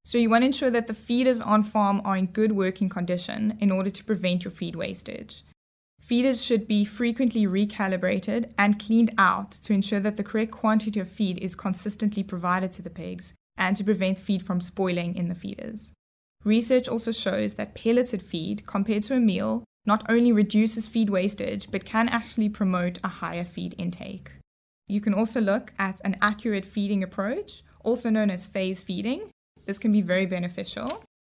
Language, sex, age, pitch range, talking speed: English, female, 20-39, 190-225 Hz, 180 wpm